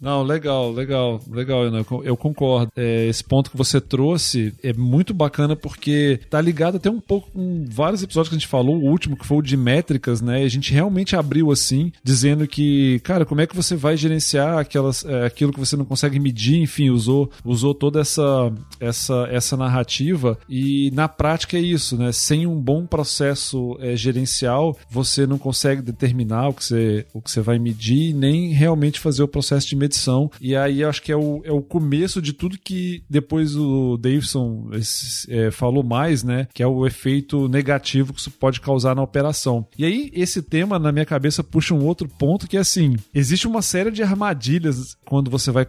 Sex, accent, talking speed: male, Brazilian, 200 wpm